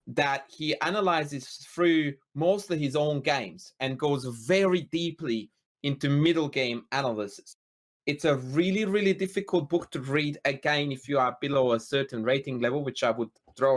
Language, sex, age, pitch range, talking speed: English, male, 30-49, 125-160 Hz, 160 wpm